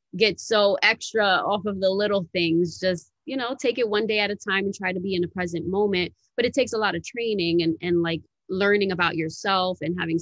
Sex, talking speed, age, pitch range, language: female, 240 wpm, 20-39, 175-215 Hz, English